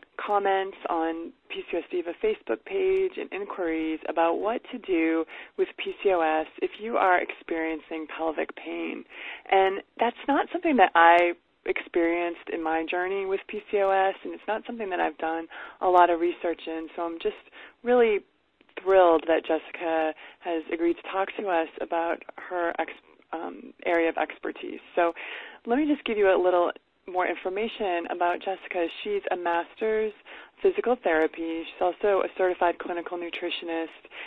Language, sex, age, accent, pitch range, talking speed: English, female, 20-39, American, 165-220 Hz, 150 wpm